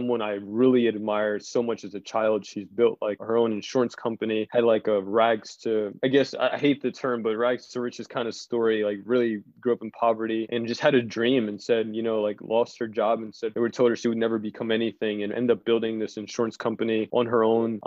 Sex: male